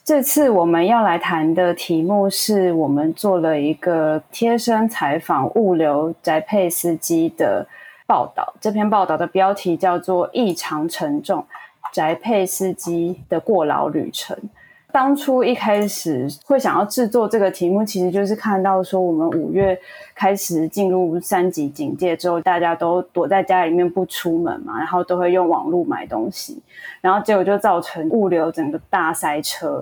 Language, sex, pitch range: Chinese, female, 170-205 Hz